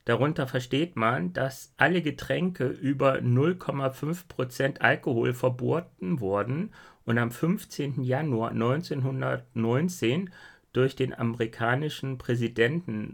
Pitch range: 115-145 Hz